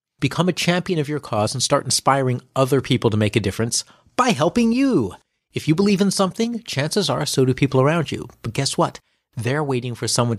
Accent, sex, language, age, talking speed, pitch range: American, male, English, 40-59, 215 wpm, 120-170 Hz